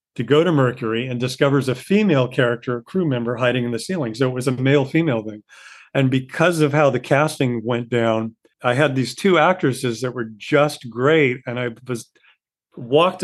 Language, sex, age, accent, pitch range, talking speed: English, male, 40-59, American, 125-155 Hz, 200 wpm